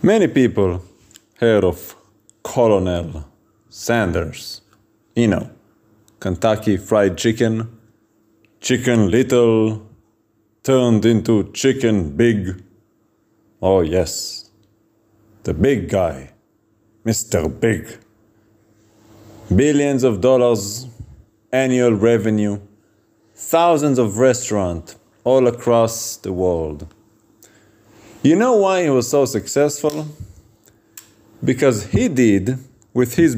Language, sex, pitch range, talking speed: English, male, 105-130 Hz, 85 wpm